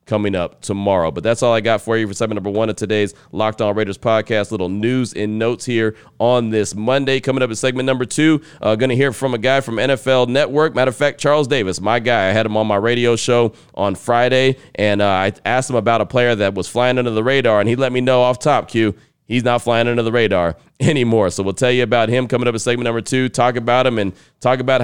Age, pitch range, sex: 30-49, 110-130 Hz, male